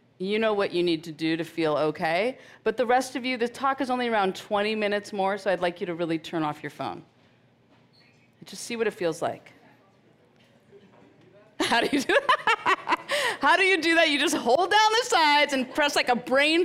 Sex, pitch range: female, 170-255 Hz